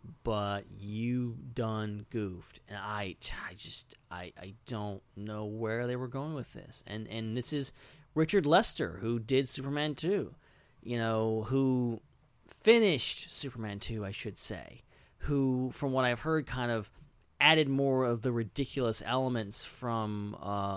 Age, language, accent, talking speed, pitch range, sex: 30-49, English, American, 150 wpm, 110-150 Hz, male